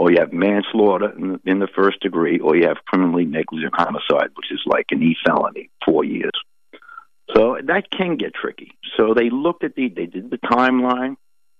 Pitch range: 90-125 Hz